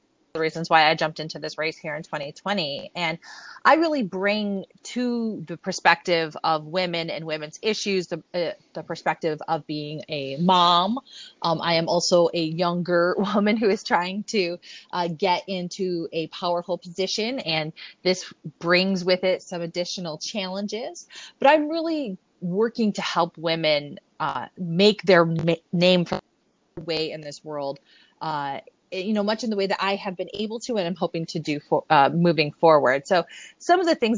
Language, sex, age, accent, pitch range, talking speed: English, female, 30-49, American, 165-205 Hz, 170 wpm